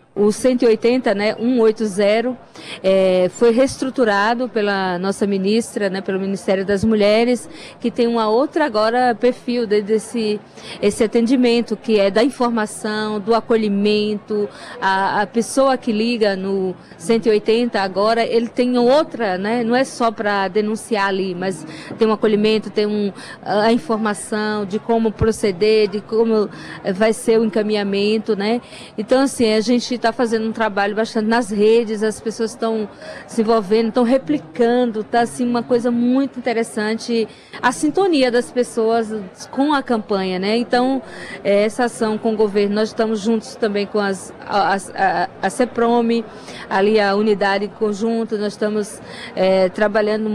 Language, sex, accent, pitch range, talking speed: Portuguese, female, Brazilian, 205-235 Hz, 145 wpm